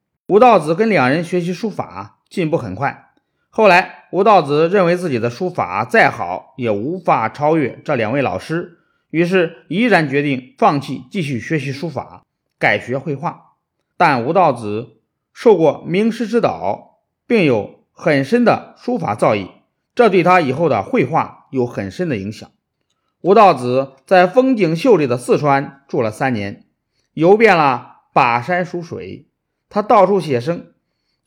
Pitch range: 140-205 Hz